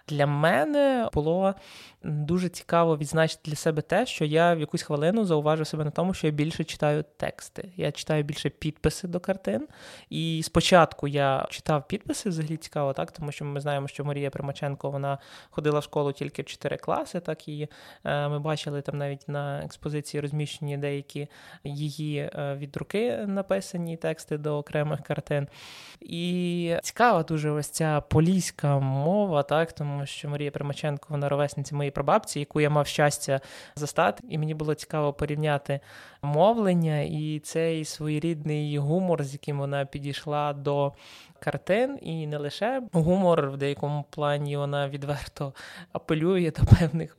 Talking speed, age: 150 wpm, 20-39